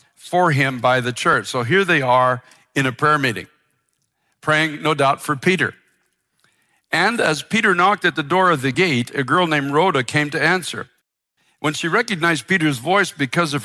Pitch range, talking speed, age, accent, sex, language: 135-175 Hz, 185 wpm, 60-79, American, male, English